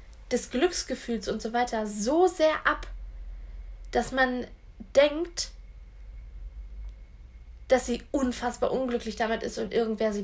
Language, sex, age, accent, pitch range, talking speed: German, female, 20-39, German, 190-235 Hz, 115 wpm